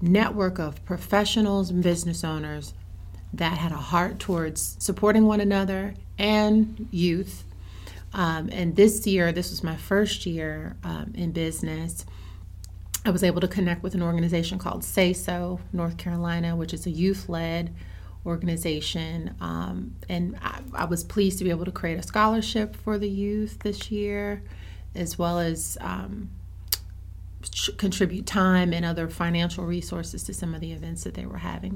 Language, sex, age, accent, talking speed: English, female, 30-49, American, 155 wpm